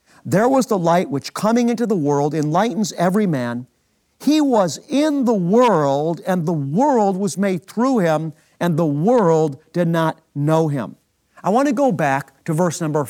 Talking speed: 175 wpm